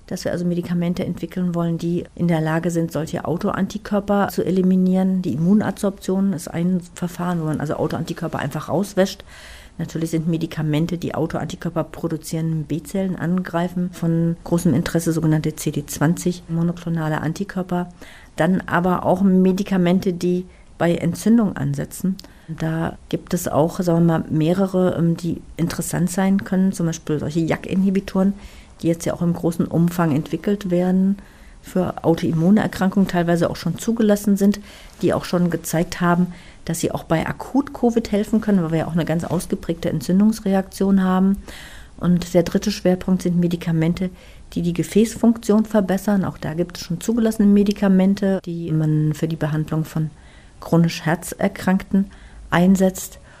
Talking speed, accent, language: 145 wpm, German, German